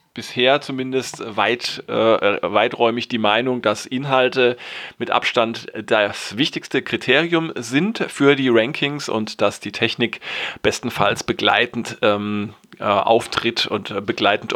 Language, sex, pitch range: German, male, 110-125 Hz